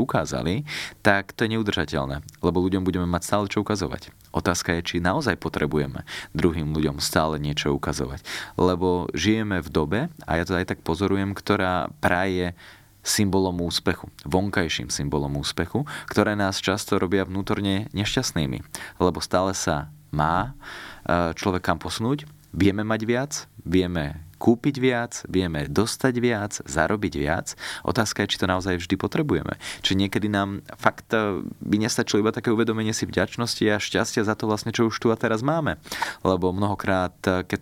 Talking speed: 150 wpm